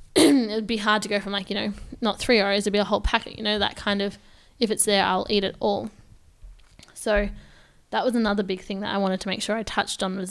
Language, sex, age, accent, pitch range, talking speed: English, female, 10-29, Australian, 185-220 Hz, 260 wpm